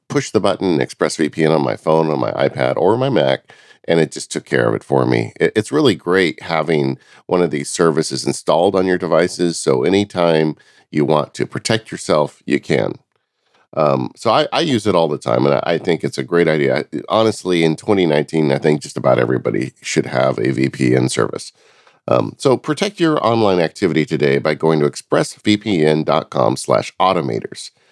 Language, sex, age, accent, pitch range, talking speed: English, male, 40-59, American, 75-100 Hz, 185 wpm